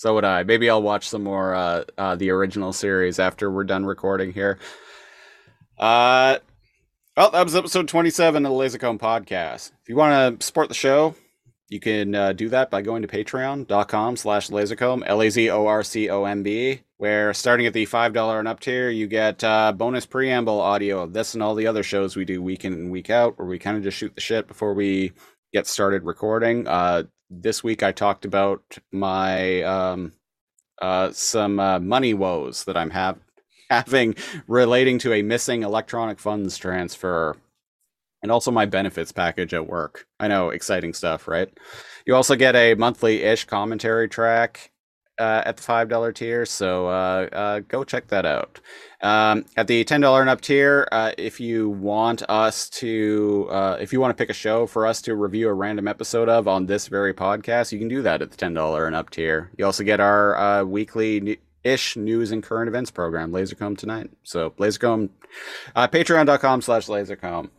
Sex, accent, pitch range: male, American, 100-120 Hz